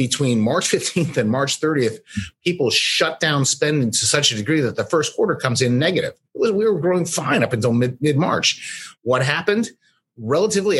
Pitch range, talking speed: 120-160 Hz, 170 wpm